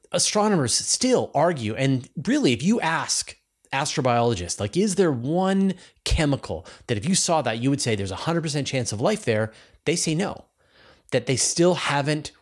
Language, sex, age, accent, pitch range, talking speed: English, male, 30-49, American, 110-155 Hz, 175 wpm